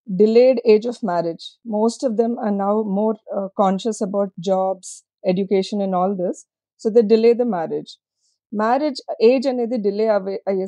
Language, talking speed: Telugu, 165 wpm